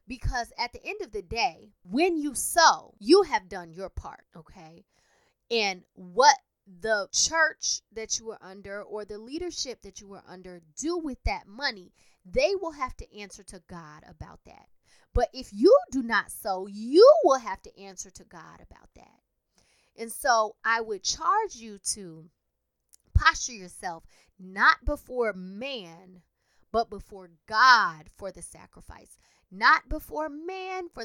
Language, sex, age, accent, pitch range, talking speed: English, female, 20-39, American, 185-255 Hz, 155 wpm